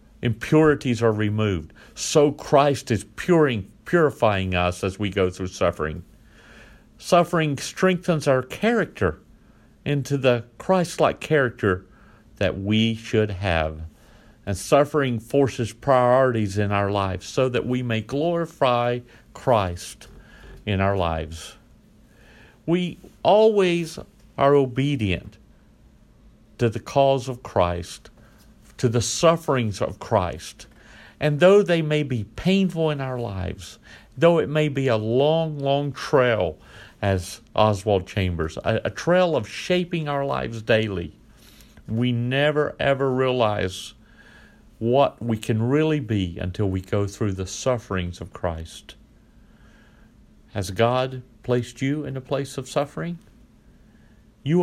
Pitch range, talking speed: 100-140 Hz, 120 wpm